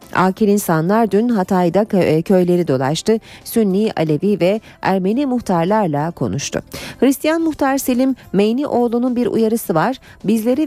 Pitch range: 175-235 Hz